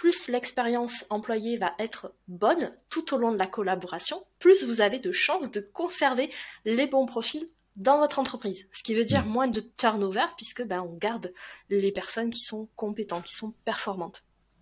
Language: French